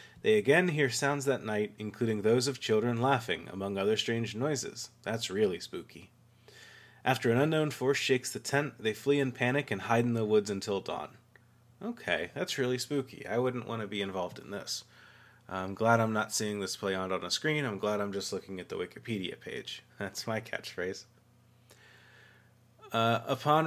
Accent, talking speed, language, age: American, 185 wpm, English, 30-49